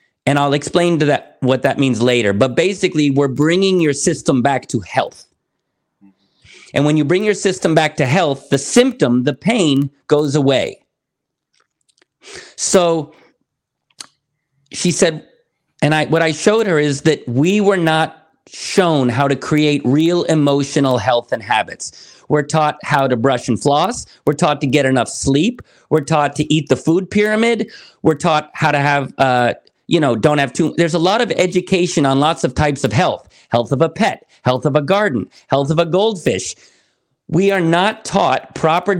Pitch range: 140-180 Hz